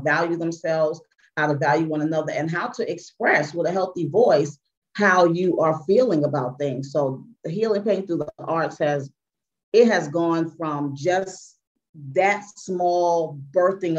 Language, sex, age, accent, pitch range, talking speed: English, female, 40-59, American, 145-165 Hz, 160 wpm